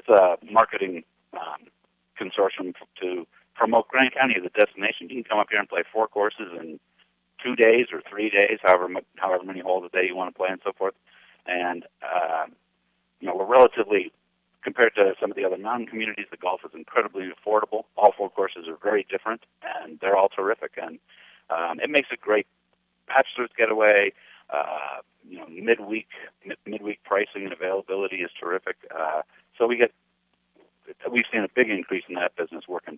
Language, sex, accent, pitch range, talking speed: English, male, American, 95-145 Hz, 180 wpm